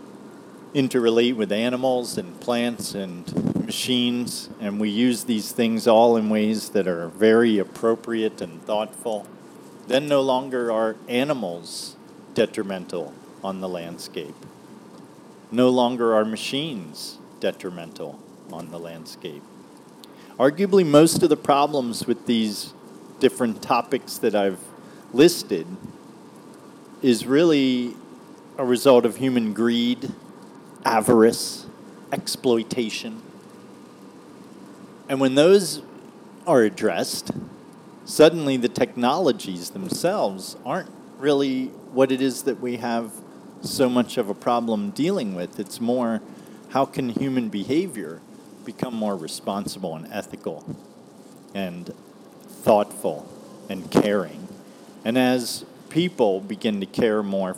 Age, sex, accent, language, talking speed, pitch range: 40-59, male, American, English, 110 wpm, 105-130 Hz